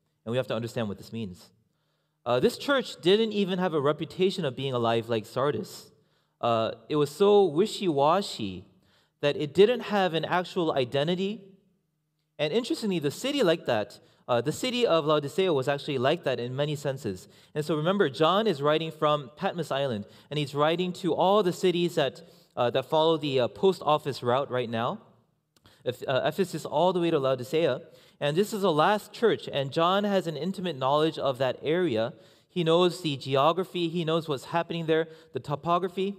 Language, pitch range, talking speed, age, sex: English, 140-185 Hz, 185 wpm, 30-49, male